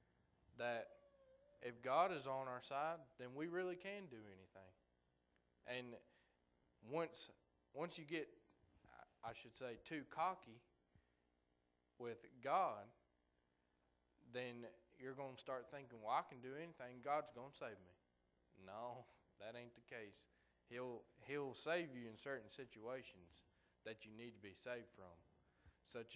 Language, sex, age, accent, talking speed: English, male, 20-39, American, 140 wpm